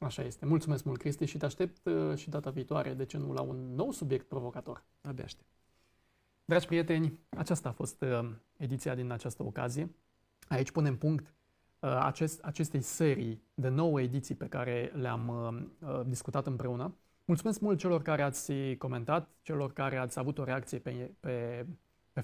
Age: 30-49